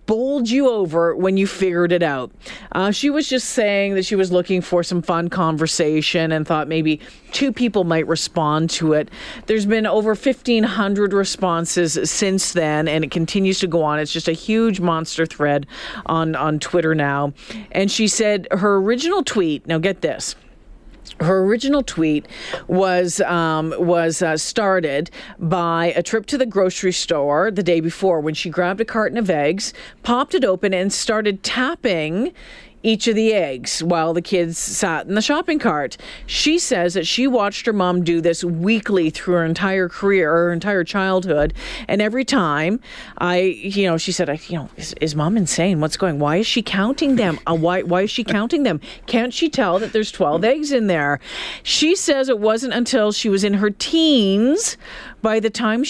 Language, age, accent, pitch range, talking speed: English, 40-59, American, 170-220 Hz, 175 wpm